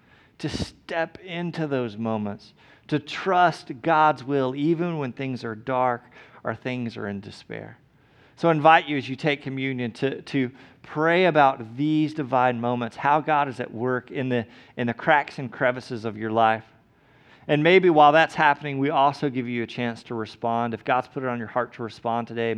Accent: American